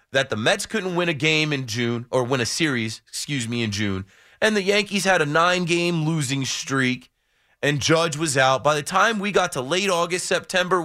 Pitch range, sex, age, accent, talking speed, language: 105-150 Hz, male, 30-49, American, 210 wpm, English